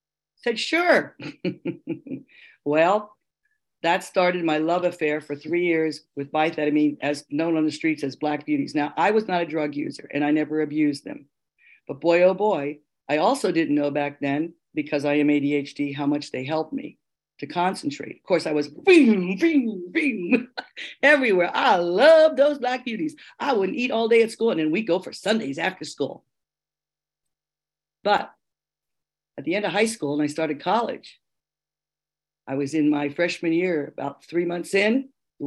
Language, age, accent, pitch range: English, 50-69, American, 150-205 Hz